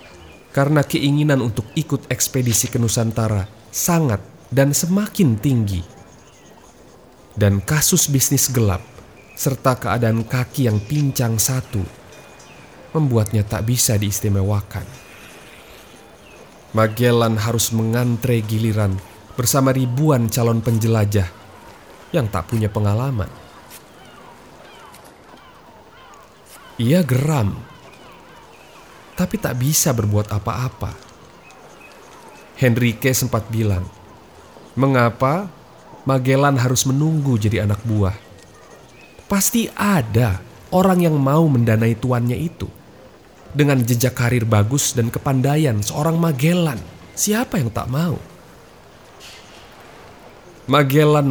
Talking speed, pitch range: 90 wpm, 105-140 Hz